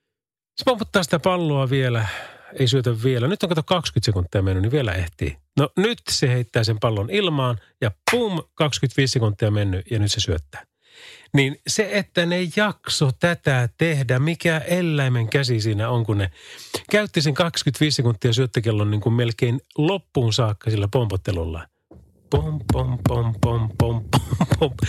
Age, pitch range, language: 30-49, 110-150 Hz, Finnish